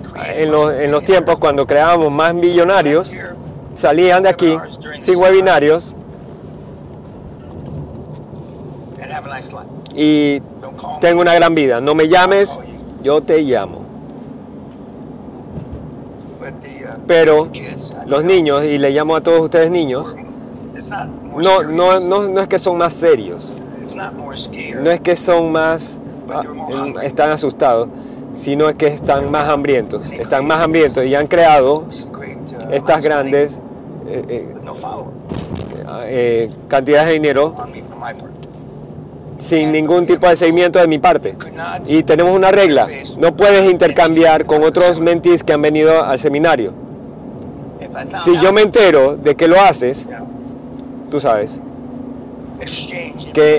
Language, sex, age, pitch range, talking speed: Spanish, male, 30-49, 150-180 Hz, 115 wpm